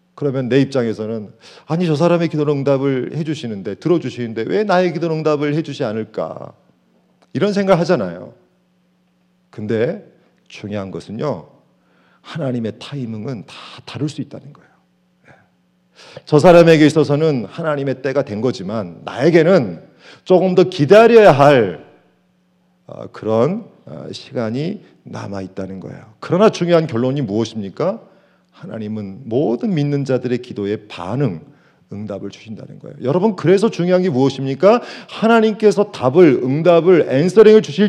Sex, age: male, 40-59